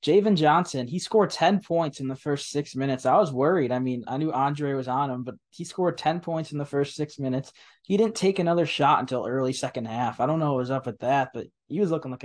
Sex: male